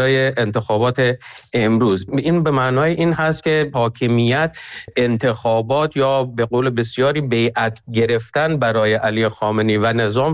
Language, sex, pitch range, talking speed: Persian, male, 110-135 Hz, 130 wpm